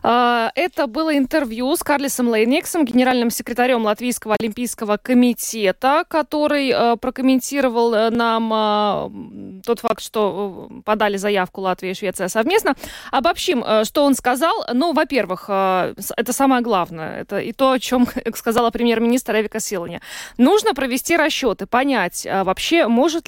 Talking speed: 120 wpm